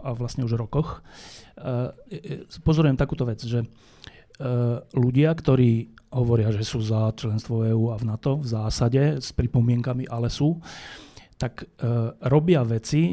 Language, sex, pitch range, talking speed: Slovak, male, 115-135 Hz, 140 wpm